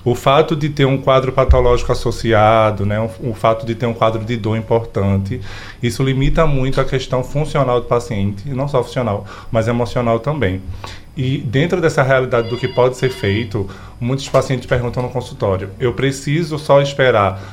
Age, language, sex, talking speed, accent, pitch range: 20-39, Portuguese, male, 175 wpm, Brazilian, 110-130 Hz